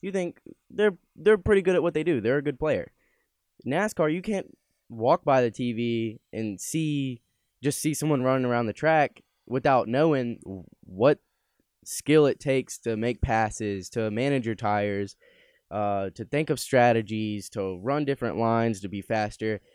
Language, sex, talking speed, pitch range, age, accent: English, male, 165 wpm, 110-135 Hz, 10-29, American